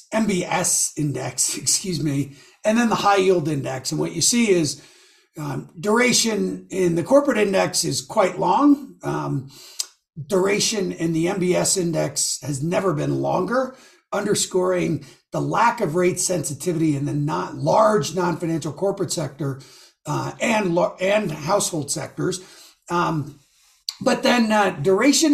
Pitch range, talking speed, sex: 150-195 Hz, 135 wpm, male